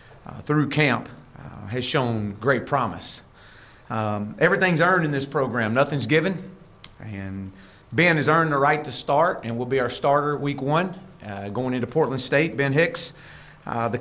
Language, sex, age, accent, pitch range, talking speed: English, male, 40-59, American, 110-150 Hz, 170 wpm